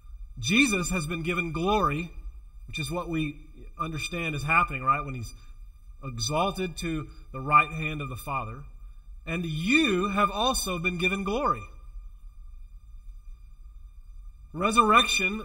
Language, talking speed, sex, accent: English, 120 wpm, male, American